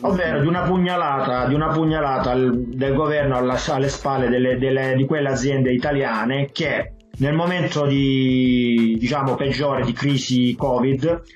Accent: native